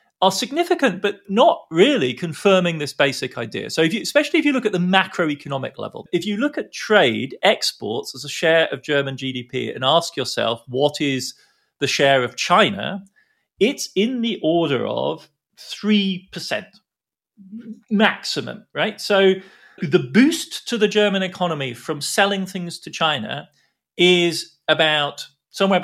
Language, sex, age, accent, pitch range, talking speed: English, male, 40-59, British, 140-195 Hz, 145 wpm